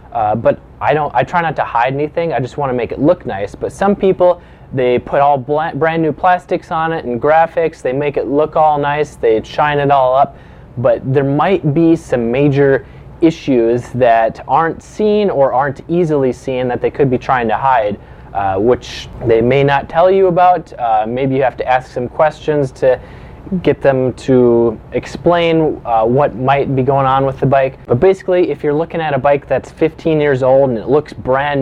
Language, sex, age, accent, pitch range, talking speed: English, male, 20-39, American, 125-160 Hz, 210 wpm